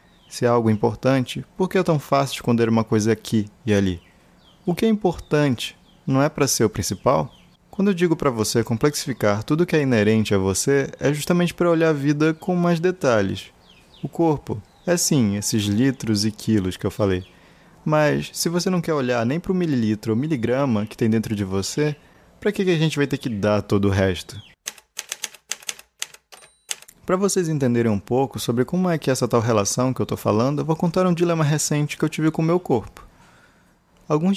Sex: male